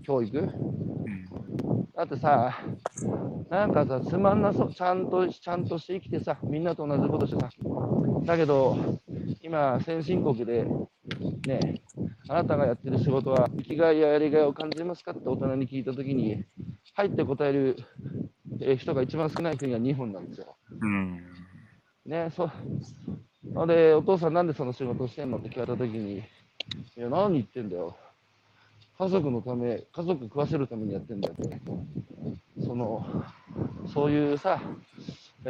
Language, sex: Japanese, male